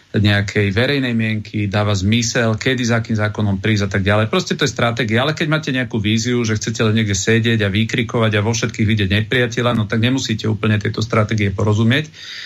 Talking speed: 195 wpm